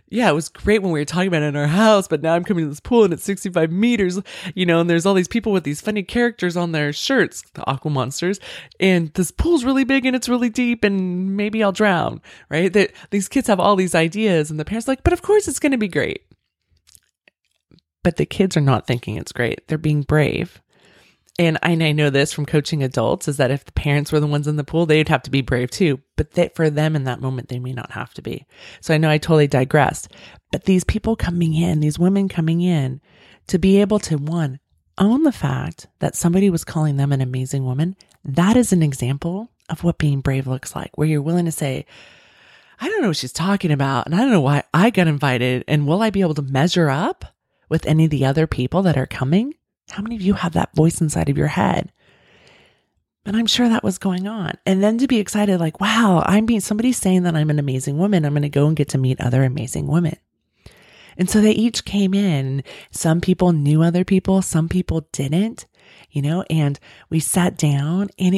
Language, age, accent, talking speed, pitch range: English, 20-39, American, 235 wpm, 145-195 Hz